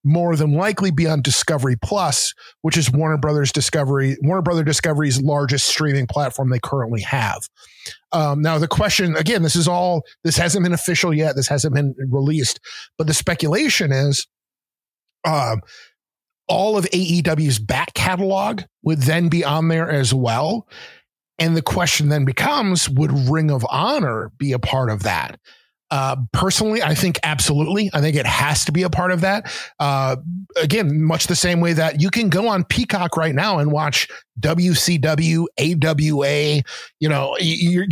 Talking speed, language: 165 wpm, English